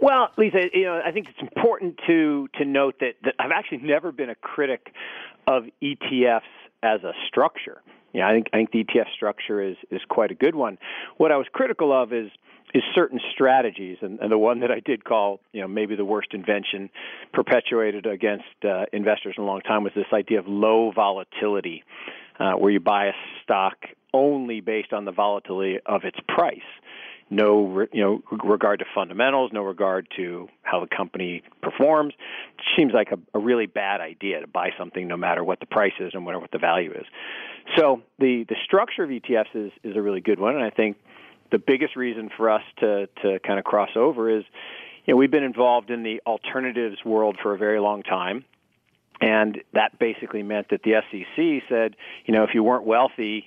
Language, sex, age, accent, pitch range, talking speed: English, male, 40-59, American, 100-130 Hz, 205 wpm